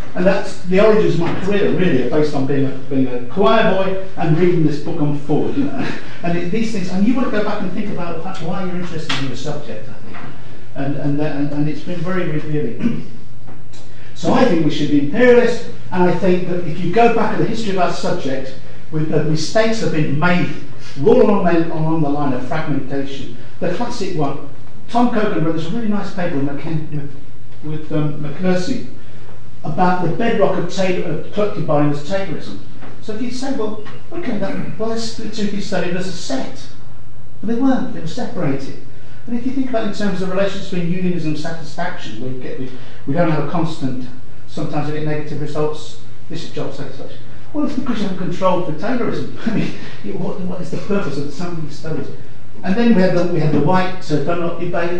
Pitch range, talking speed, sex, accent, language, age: 140-190 Hz, 210 wpm, male, British, English, 50-69